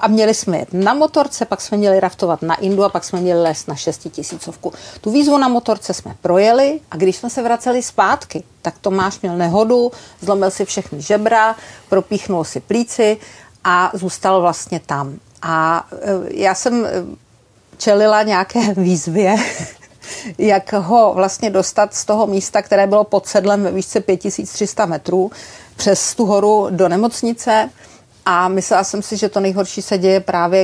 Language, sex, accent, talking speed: Czech, female, native, 160 wpm